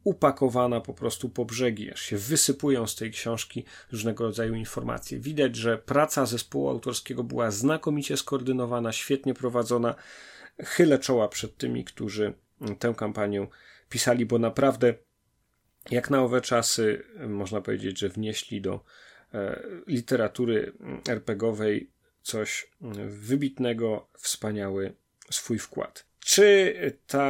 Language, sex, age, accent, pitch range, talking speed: Polish, male, 30-49, native, 110-135 Hz, 115 wpm